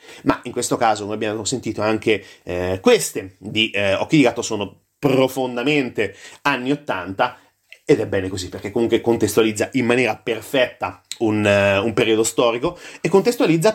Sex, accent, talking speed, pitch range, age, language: male, native, 155 wpm, 120-170 Hz, 30-49, Italian